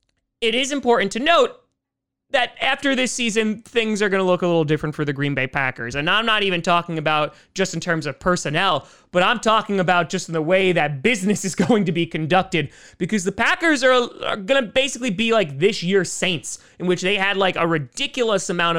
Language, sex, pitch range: English, male, 165-220 Hz